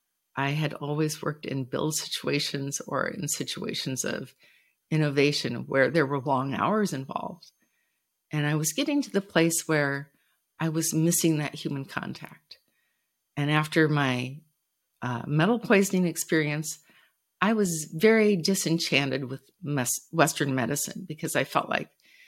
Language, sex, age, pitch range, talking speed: English, female, 50-69, 145-185 Hz, 135 wpm